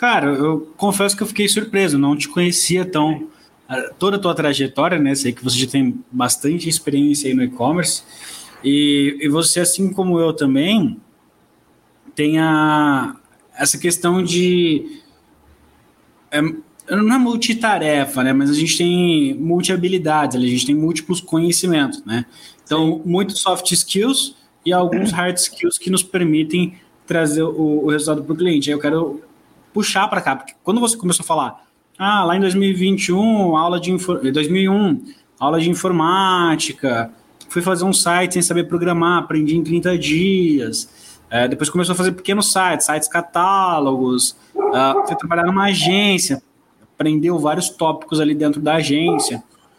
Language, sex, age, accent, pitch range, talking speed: Portuguese, male, 20-39, Brazilian, 150-190 Hz, 150 wpm